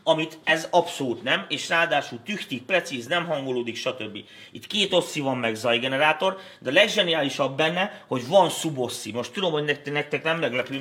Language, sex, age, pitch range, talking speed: Hungarian, male, 30-49, 130-170 Hz, 165 wpm